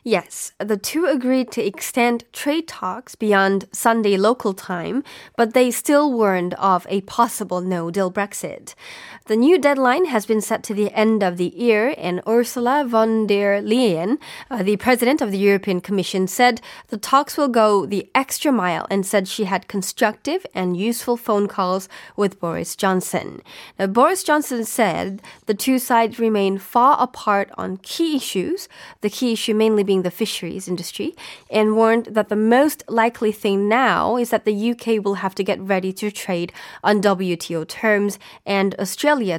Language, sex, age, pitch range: Korean, female, 20-39, 195-245 Hz